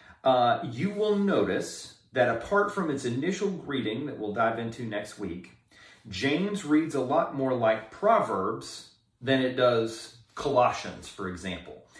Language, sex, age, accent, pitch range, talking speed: English, male, 40-59, American, 110-145 Hz, 145 wpm